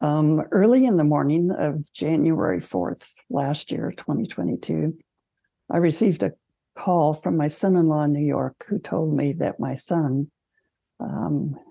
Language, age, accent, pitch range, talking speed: English, 60-79, American, 135-165 Hz, 150 wpm